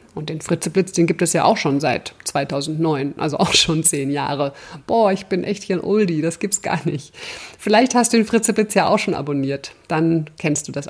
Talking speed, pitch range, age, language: 220 wpm, 165-215 Hz, 50-69, German